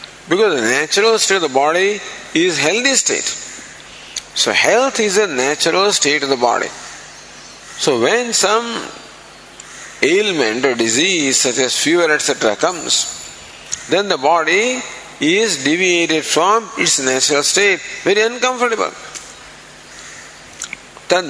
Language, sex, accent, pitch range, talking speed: English, male, Indian, 130-195 Hz, 120 wpm